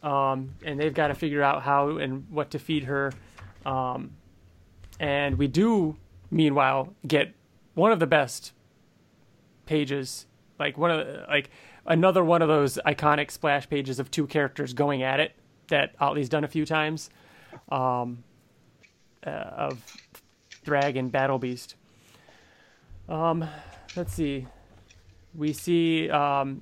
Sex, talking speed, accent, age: male, 135 wpm, American, 30-49